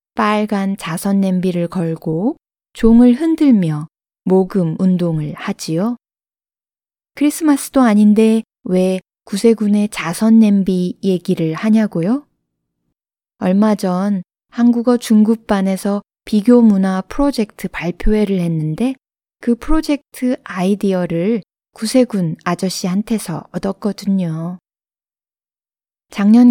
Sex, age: female, 20-39